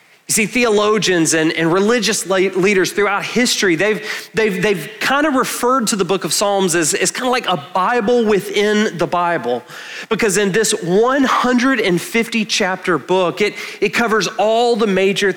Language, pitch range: English, 155-215 Hz